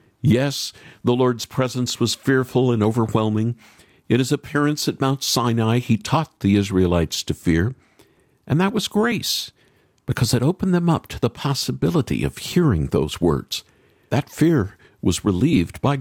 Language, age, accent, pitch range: English, 50-69, American, 110-160 Hz